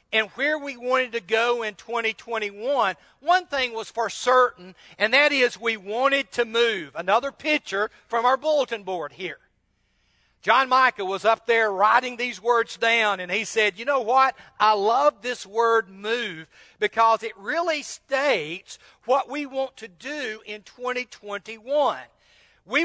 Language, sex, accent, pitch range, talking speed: English, male, American, 210-270 Hz, 155 wpm